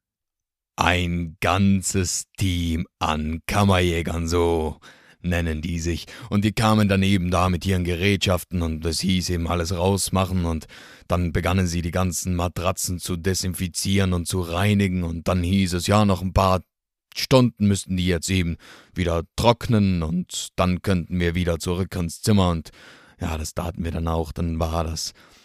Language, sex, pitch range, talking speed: German, male, 85-100 Hz, 165 wpm